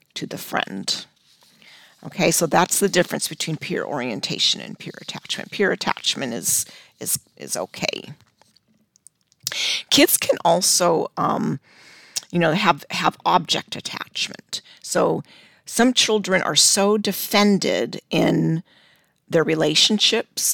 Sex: female